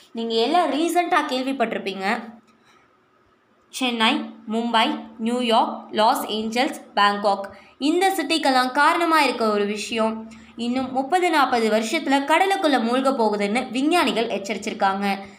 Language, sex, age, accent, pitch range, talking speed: Tamil, male, 20-39, native, 215-290 Hz, 100 wpm